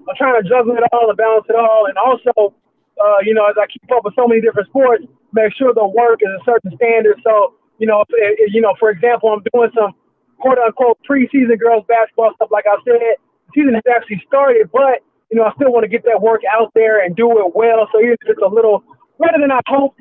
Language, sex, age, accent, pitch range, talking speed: English, male, 20-39, American, 215-245 Hz, 250 wpm